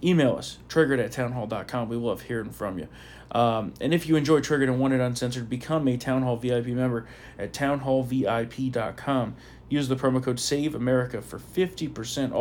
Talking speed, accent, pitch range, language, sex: 170 wpm, American, 115-130 Hz, English, male